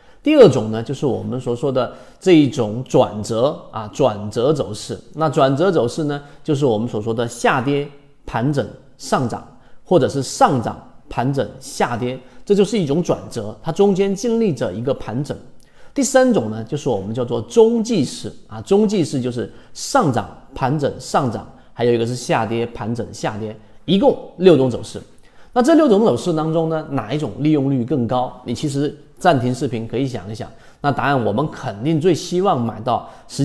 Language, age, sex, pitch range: Chinese, 40-59, male, 115-155 Hz